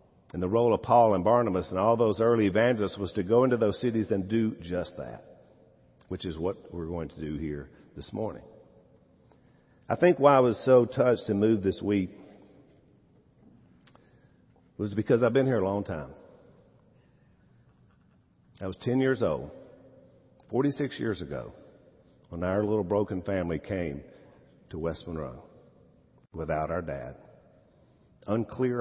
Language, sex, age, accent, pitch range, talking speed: English, male, 50-69, American, 95-130 Hz, 150 wpm